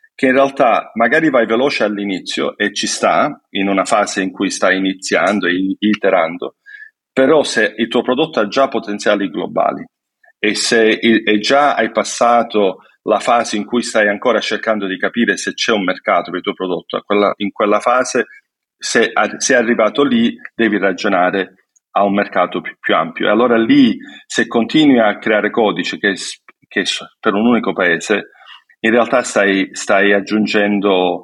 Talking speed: 160 wpm